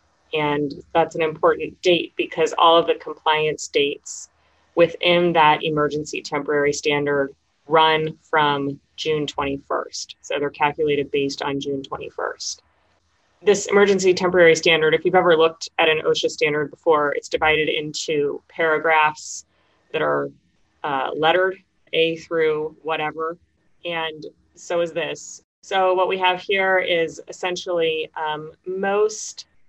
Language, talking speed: English, 130 wpm